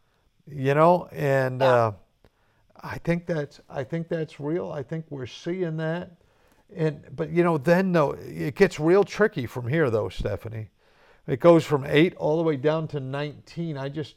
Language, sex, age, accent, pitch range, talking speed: English, male, 50-69, American, 135-160 Hz, 175 wpm